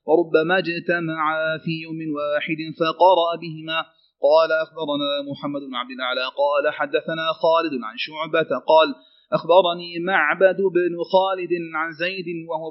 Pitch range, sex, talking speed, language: 160-180 Hz, male, 125 wpm, Arabic